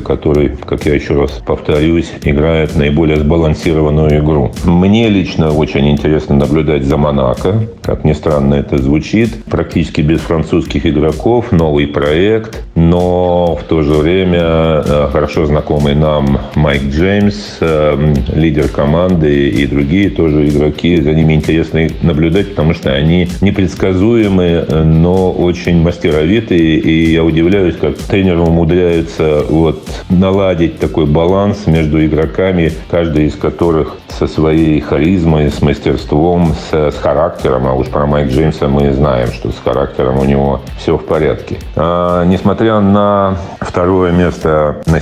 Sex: male